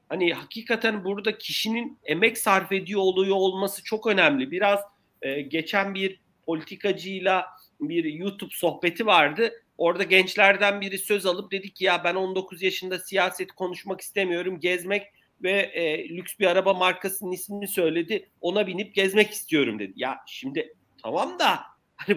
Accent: native